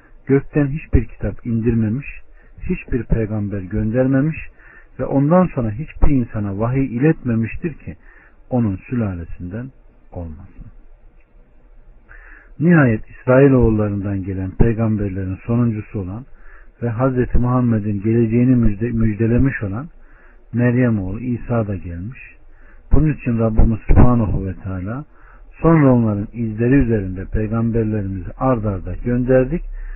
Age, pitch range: 50-69, 95-125 Hz